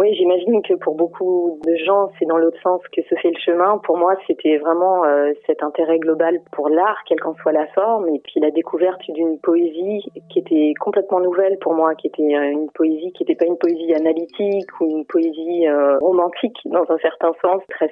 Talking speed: 205 wpm